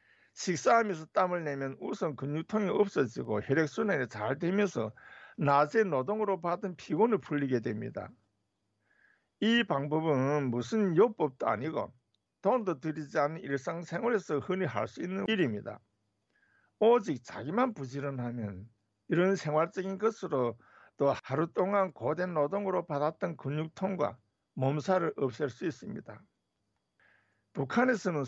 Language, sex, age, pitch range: Korean, male, 60-79, 135-195 Hz